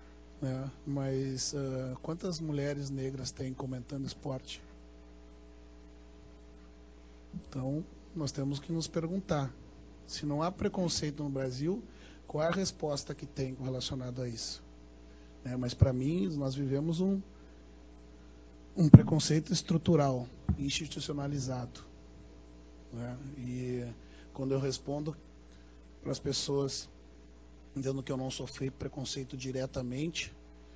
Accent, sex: Brazilian, male